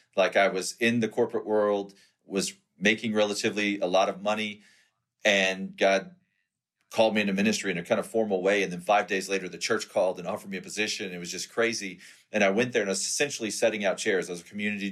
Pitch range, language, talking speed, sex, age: 95-110 Hz, English, 220 wpm, male, 40-59